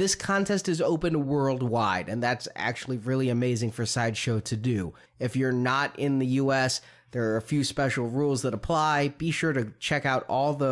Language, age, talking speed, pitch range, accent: English, 30-49, 195 wpm, 120-145 Hz, American